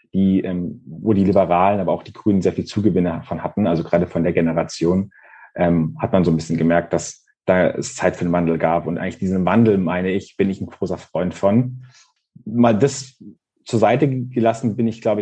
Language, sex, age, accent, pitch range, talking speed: German, male, 30-49, German, 95-115 Hz, 205 wpm